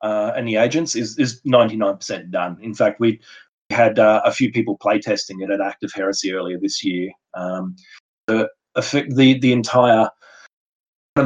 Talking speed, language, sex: 170 wpm, English, male